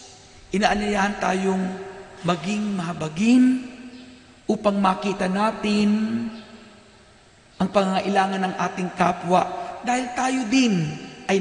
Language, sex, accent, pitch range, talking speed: Filipino, male, native, 195-255 Hz, 85 wpm